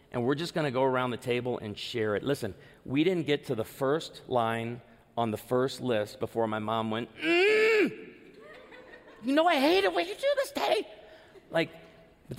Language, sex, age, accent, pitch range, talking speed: English, male, 40-59, American, 130-165 Hz, 200 wpm